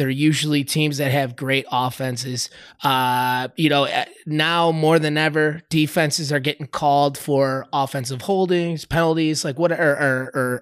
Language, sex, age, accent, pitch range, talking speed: English, male, 20-39, American, 145-175 Hz, 155 wpm